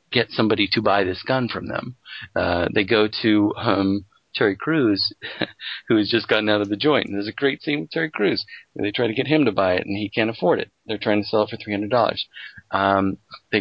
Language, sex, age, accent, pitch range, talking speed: English, male, 40-59, American, 100-115 Hz, 235 wpm